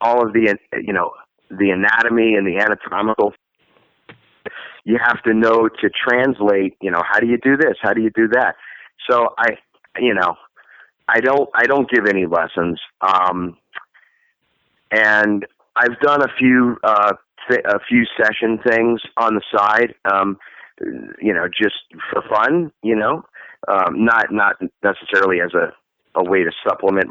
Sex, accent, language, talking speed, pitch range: male, American, English, 155 wpm, 100-120 Hz